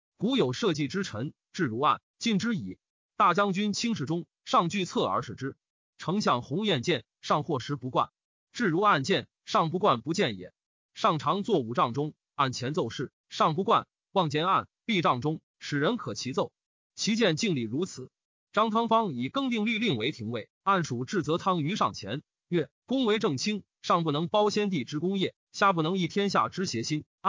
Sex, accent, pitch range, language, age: male, native, 145-205 Hz, Chinese, 30-49